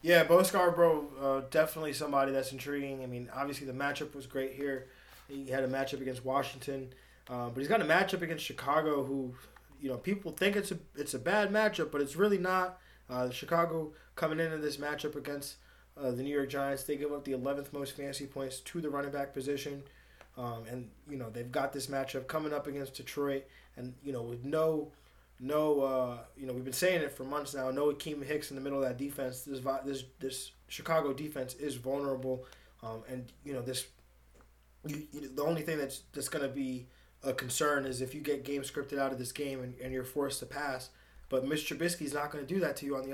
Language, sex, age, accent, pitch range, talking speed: English, male, 20-39, American, 130-150 Hz, 220 wpm